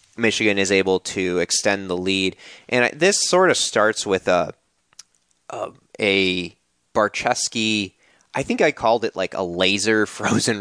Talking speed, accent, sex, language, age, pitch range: 145 wpm, American, male, English, 20-39, 90-110 Hz